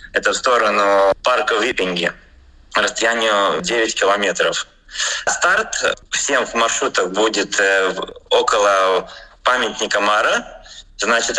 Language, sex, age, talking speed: Russian, male, 20-39, 90 wpm